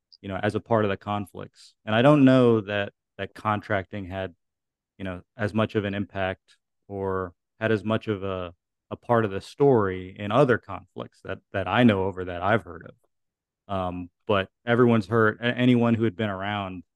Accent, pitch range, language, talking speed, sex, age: American, 95-110 Hz, English, 195 wpm, male, 30-49